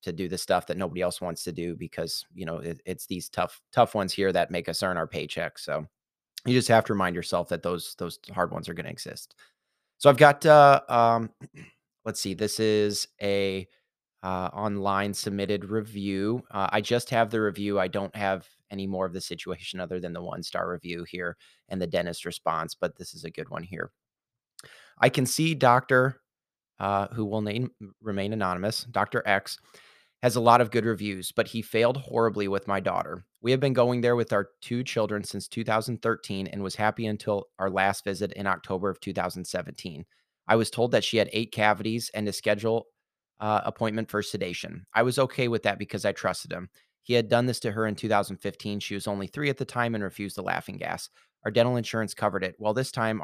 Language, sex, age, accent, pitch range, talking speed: English, male, 30-49, American, 95-115 Hz, 210 wpm